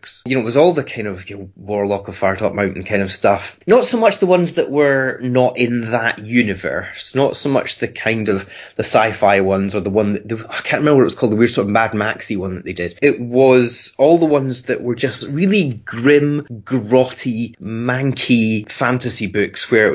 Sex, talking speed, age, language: male, 230 wpm, 30-49, English